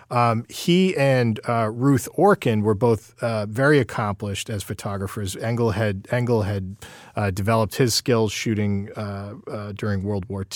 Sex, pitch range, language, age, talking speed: male, 100-120 Hz, English, 40-59, 150 wpm